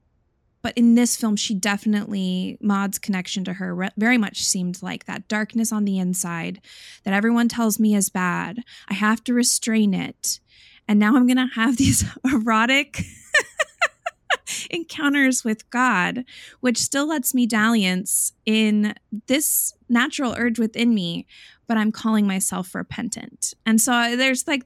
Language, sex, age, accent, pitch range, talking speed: English, female, 20-39, American, 195-235 Hz, 150 wpm